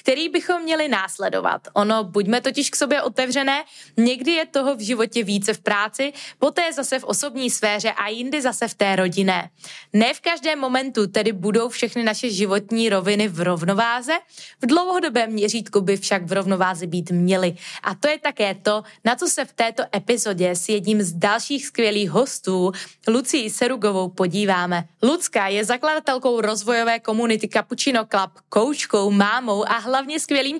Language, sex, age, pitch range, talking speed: Czech, female, 20-39, 200-265 Hz, 165 wpm